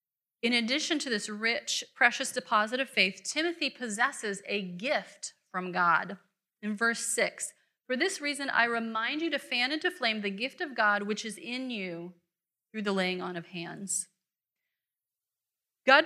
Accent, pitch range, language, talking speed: American, 195-275 Hz, English, 160 wpm